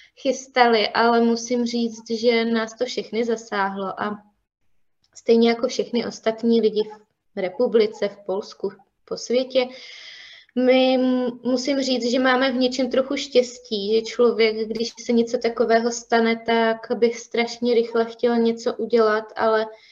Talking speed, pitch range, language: 135 wpm, 225-245 Hz, Czech